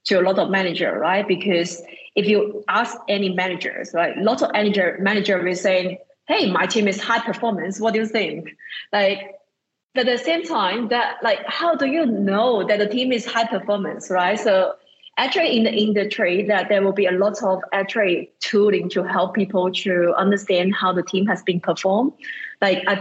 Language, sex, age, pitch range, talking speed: English, female, 20-39, 185-220 Hz, 200 wpm